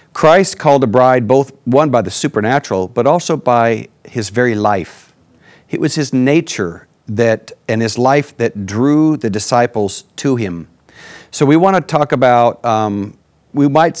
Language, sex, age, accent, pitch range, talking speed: English, male, 50-69, American, 110-140 Hz, 165 wpm